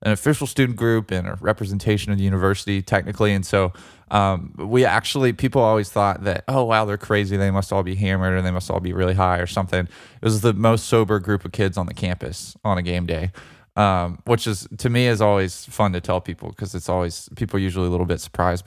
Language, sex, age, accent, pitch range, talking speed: English, male, 20-39, American, 90-110 Hz, 240 wpm